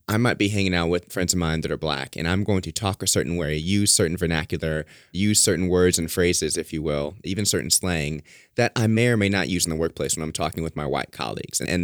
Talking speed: 270 wpm